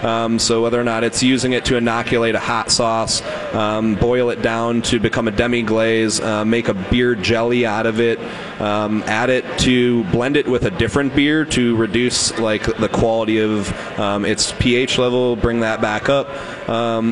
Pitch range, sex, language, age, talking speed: 110-125 Hz, male, English, 30-49, 190 wpm